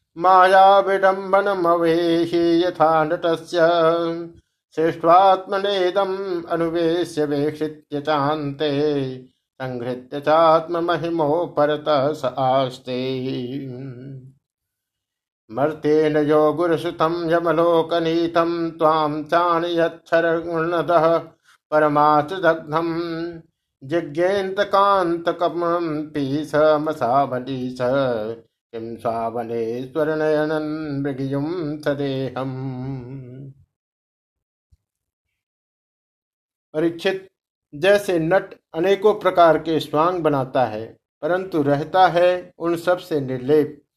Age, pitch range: 50-69, 140-170 Hz